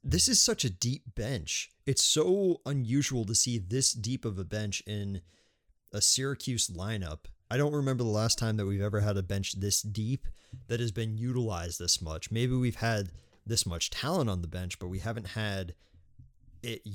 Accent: American